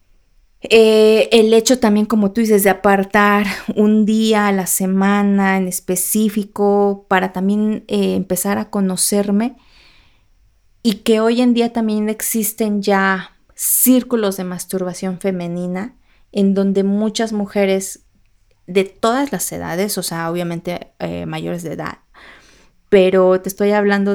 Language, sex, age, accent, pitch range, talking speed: Spanish, female, 30-49, Mexican, 190-220 Hz, 130 wpm